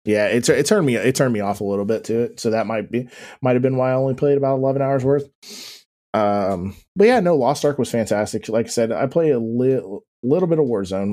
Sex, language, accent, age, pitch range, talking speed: male, English, American, 20-39, 100-125 Hz, 260 wpm